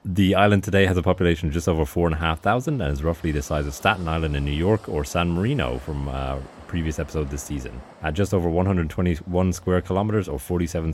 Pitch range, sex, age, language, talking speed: 75-95 Hz, male, 30-49, English, 230 wpm